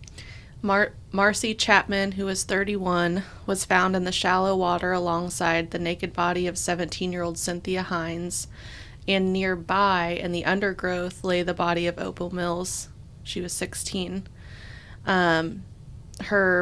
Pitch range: 175-190 Hz